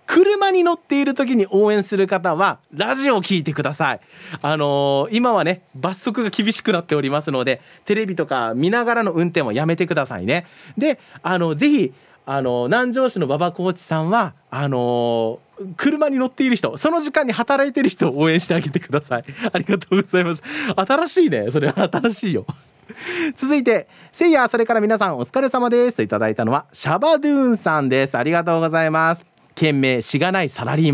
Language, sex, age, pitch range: Japanese, male, 40-59, 155-240 Hz